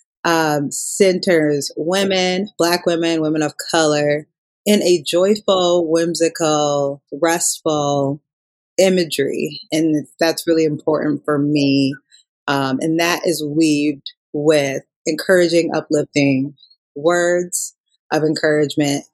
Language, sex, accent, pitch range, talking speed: English, female, American, 150-220 Hz, 95 wpm